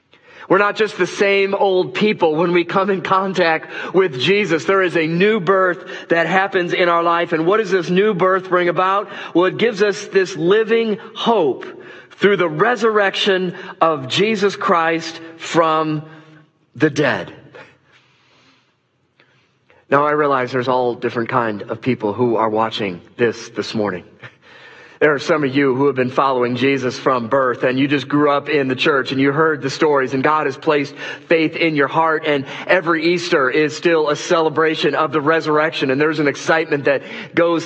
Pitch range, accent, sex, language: 135-180 Hz, American, male, English